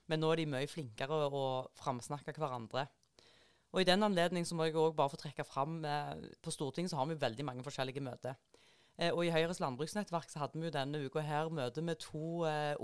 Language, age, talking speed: English, 30-49, 220 wpm